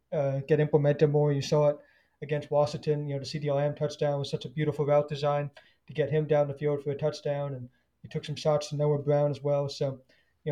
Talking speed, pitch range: 235 wpm, 140-155 Hz